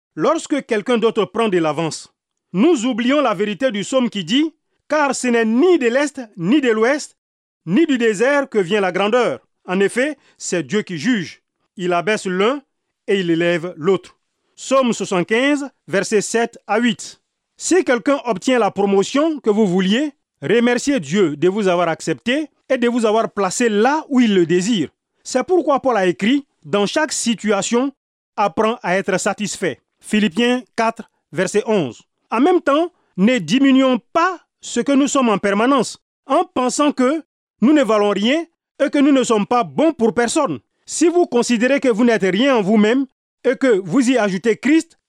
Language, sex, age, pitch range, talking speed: French, male, 40-59, 200-270 Hz, 175 wpm